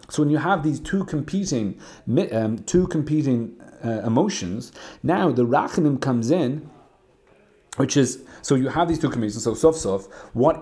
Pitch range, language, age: 110-150 Hz, English, 30-49